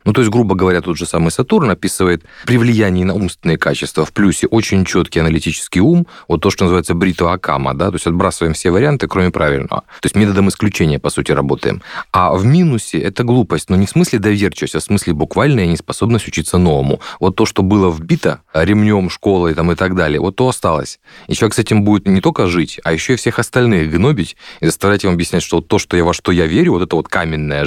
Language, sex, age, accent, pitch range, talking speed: Russian, male, 30-49, native, 85-105 Hz, 225 wpm